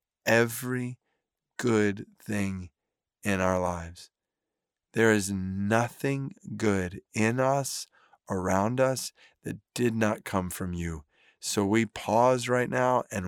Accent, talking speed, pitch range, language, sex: American, 115 wpm, 100-120 Hz, English, male